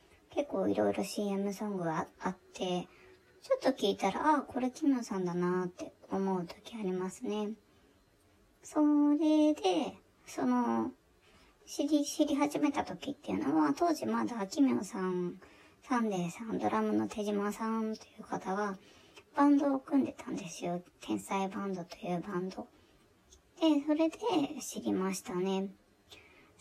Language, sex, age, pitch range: Japanese, male, 20-39, 185-285 Hz